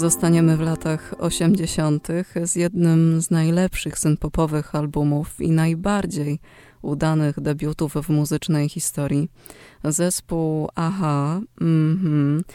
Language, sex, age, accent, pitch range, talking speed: Polish, female, 20-39, native, 150-180 Hz, 95 wpm